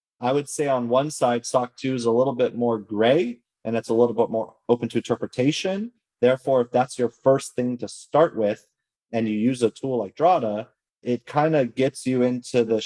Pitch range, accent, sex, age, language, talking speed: 105-125 Hz, American, male, 30-49, English, 215 wpm